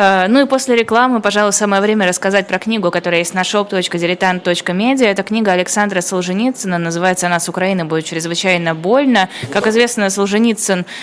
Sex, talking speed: female, 150 wpm